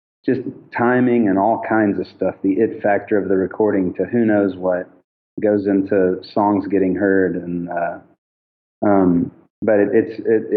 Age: 30-49